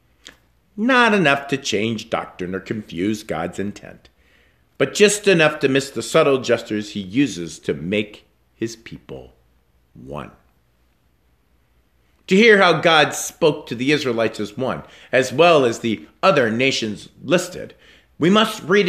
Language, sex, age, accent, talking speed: English, male, 50-69, American, 140 wpm